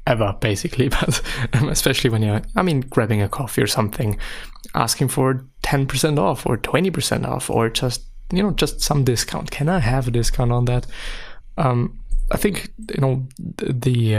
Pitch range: 110-130 Hz